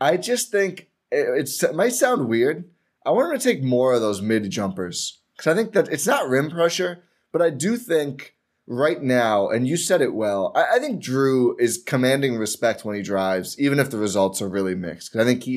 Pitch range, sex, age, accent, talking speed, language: 105-140 Hz, male, 20-39, American, 220 wpm, English